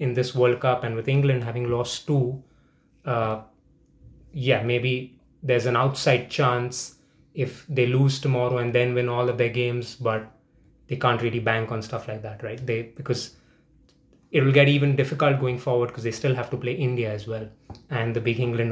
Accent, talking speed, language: Indian, 190 wpm, English